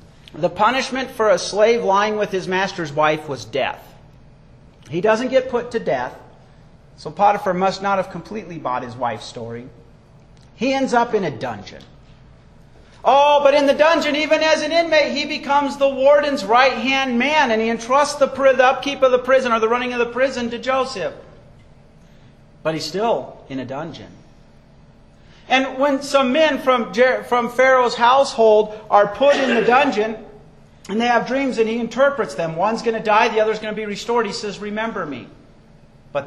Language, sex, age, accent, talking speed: English, male, 50-69, American, 175 wpm